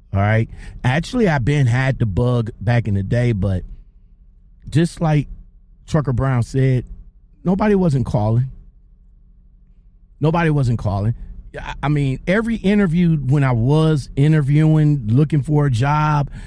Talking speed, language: 130 wpm, English